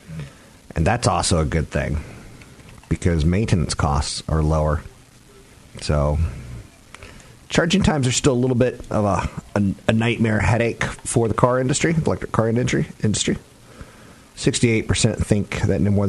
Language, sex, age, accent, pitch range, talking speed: English, male, 40-59, American, 85-120 Hz, 145 wpm